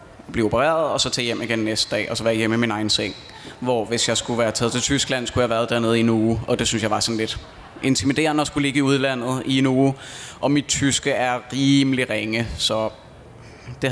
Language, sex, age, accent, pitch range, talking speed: Danish, male, 20-39, native, 120-140 Hz, 245 wpm